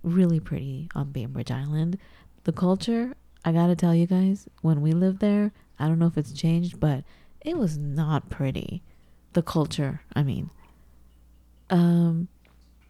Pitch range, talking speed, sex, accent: 155-195 Hz, 150 wpm, female, American